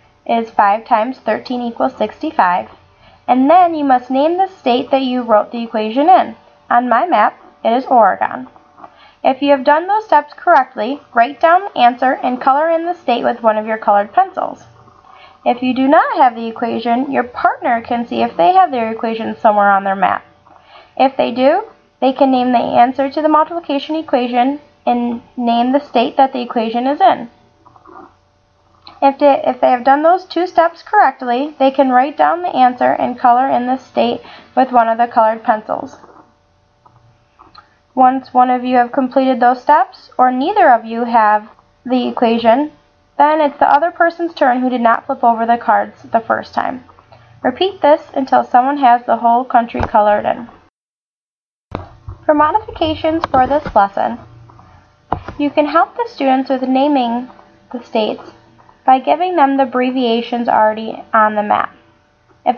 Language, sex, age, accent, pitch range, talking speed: English, female, 10-29, American, 235-295 Hz, 170 wpm